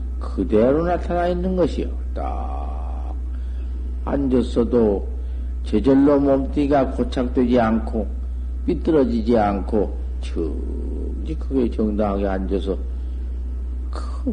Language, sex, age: Korean, male, 60-79